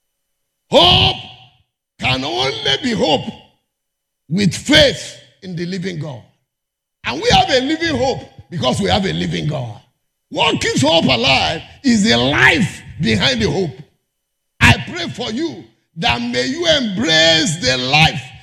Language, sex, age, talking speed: English, male, 50-69, 140 wpm